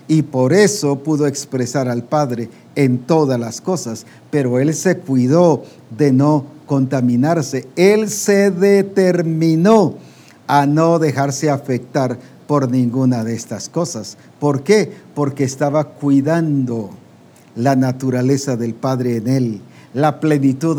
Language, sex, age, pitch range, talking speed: English, male, 50-69, 135-190 Hz, 125 wpm